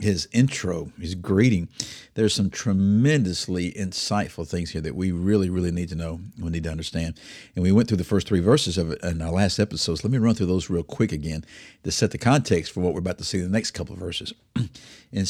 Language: English